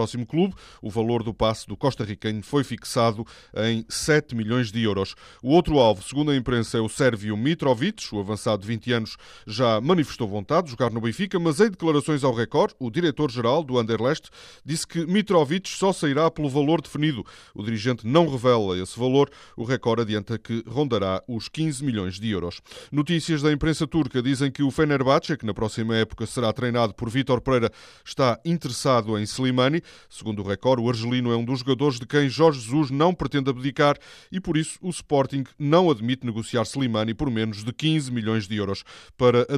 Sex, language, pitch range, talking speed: male, Portuguese, 115-145 Hz, 195 wpm